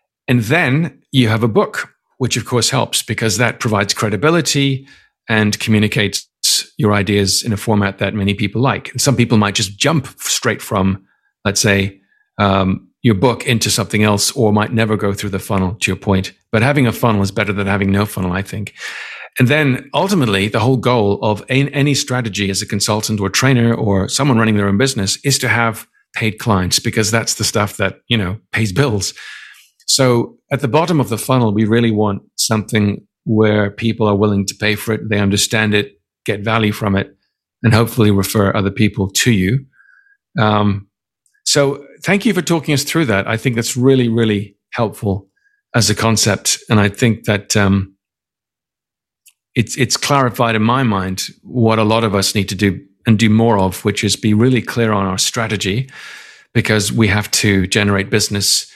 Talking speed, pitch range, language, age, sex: 190 wpm, 100-125 Hz, English, 50-69, male